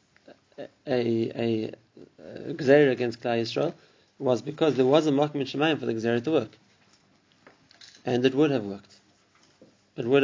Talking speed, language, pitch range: 150 wpm, English, 120-150 Hz